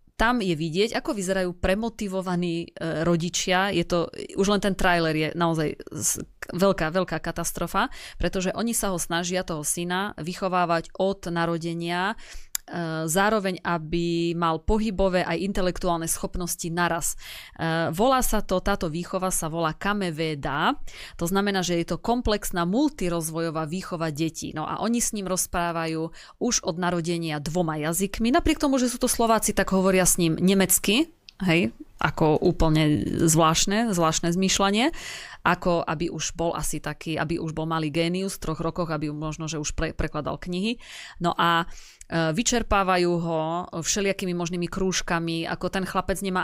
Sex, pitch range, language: female, 165-190 Hz, Slovak